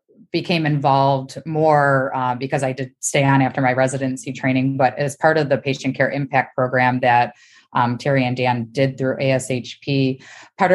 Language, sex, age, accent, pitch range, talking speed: English, female, 20-39, American, 125-135 Hz, 175 wpm